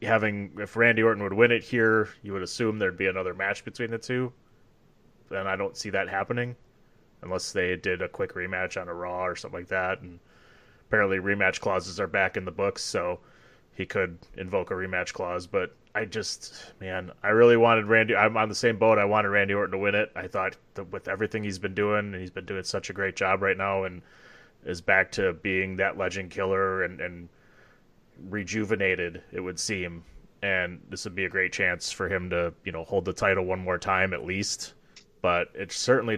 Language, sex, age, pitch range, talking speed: English, male, 20-39, 90-110 Hz, 210 wpm